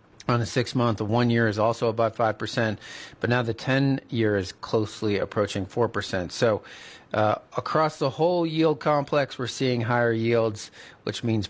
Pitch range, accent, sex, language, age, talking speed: 110-135 Hz, American, male, English, 30-49, 165 wpm